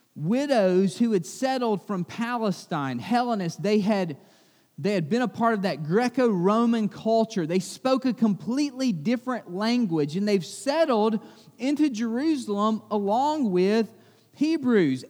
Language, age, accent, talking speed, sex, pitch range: English, 30-49, American, 125 wpm, male, 200-260 Hz